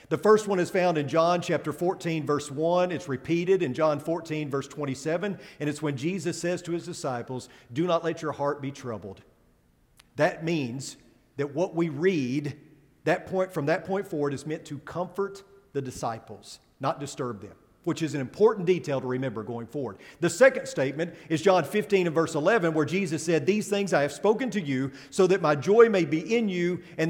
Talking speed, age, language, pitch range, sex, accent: 200 wpm, 40-59, English, 135-180 Hz, male, American